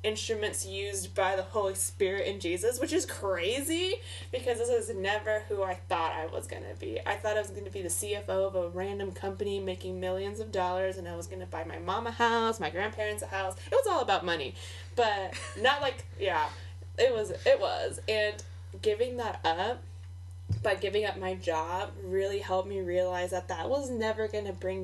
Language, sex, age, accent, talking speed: English, female, 20-39, American, 210 wpm